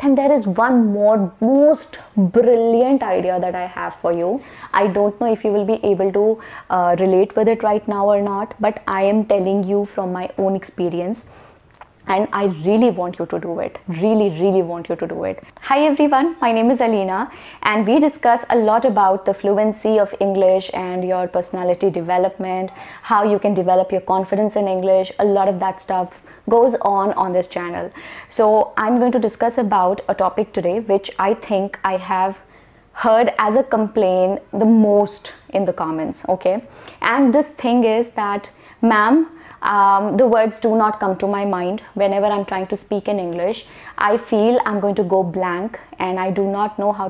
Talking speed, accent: 190 wpm, native